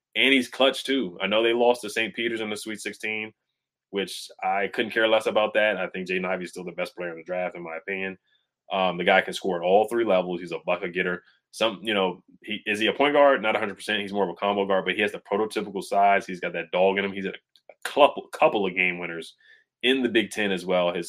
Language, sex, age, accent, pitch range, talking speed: English, male, 20-39, American, 90-110 Hz, 265 wpm